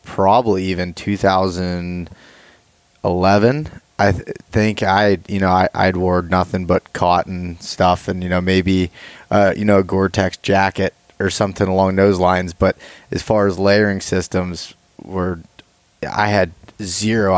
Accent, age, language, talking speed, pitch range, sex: American, 20-39, English, 140 wpm, 95-100 Hz, male